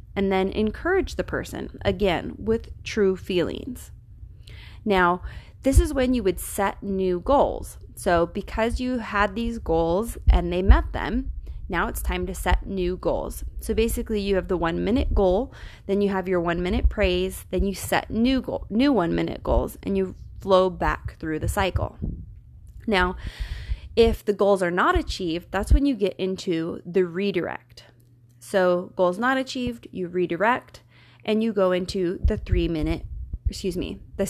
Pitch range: 170-210 Hz